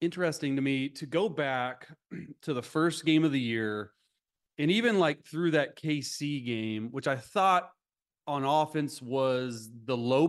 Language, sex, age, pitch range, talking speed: English, male, 30-49, 130-175 Hz, 165 wpm